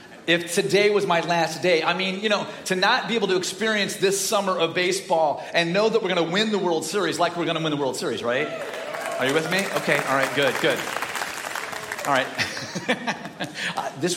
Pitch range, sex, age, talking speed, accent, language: 140-205 Hz, male, 40-59, 215 wpm, American, English